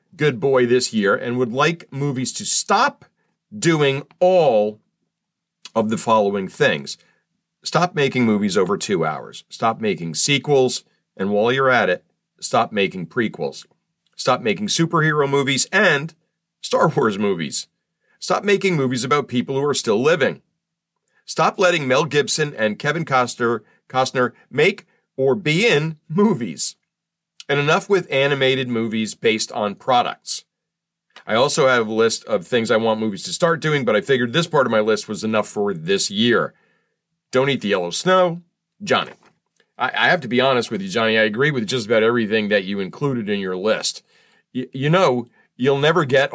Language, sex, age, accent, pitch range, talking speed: English, male, 40-59, American, 115-165 Hz, 165 wpm